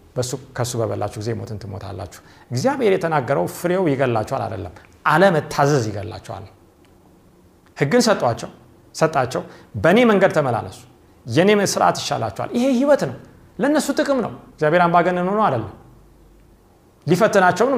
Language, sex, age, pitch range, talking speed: Amharic, male, 40-59, 120-195 Hz, 120 wpm